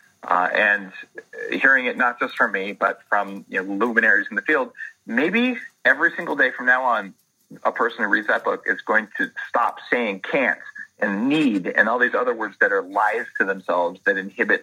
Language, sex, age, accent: English, male, 30-49, American